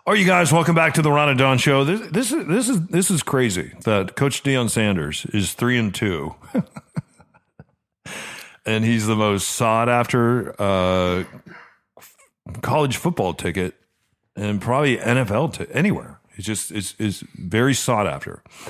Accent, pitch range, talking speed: American, 100-135 Hz, 160 wpm